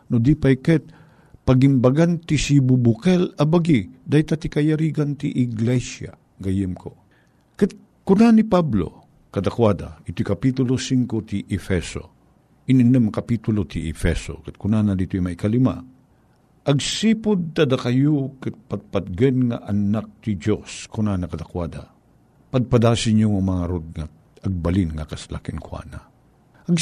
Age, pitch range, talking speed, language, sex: 50-69, 105-160 Hz, 125 wpm, Filipino, male